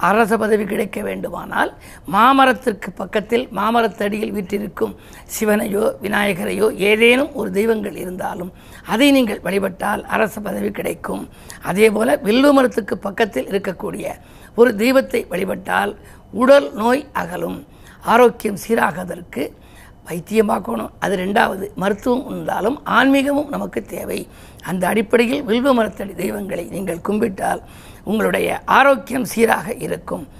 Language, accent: Tamil, native